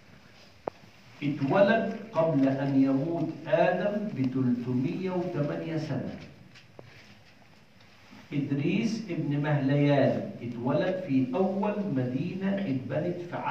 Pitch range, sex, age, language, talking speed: 120-150 Hz, male, 50-69, English, 75 wpm